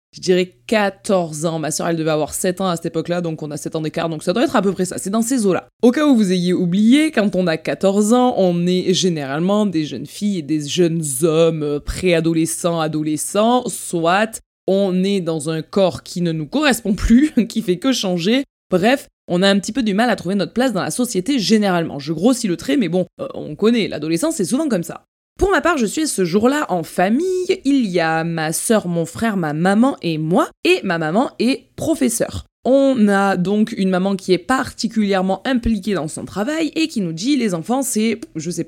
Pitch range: 170-235 Hz